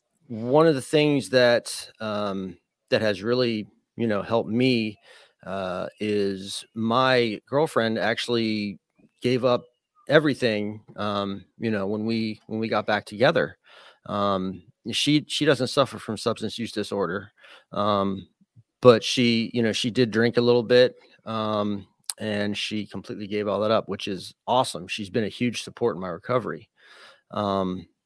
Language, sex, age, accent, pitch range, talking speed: English, male, 30-49, American, 105-125 Hz, 150 wpm